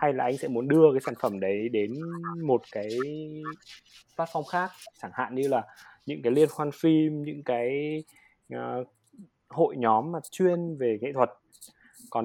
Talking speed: 165 wpm